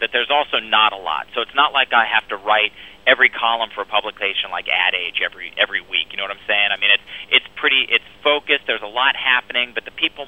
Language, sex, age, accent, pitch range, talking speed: English, male, 40-59, American, 105-130 Hz, 265 wpm